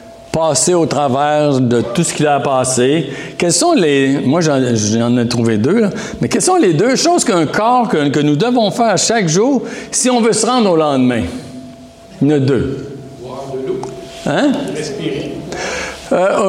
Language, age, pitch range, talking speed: English, 60-79, 135-215 Hz, 180 wpm